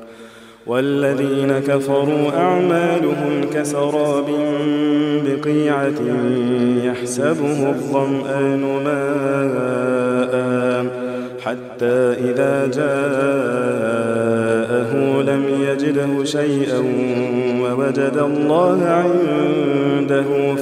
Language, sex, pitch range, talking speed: Arabic, male, 125-140 Hz, 50 wpm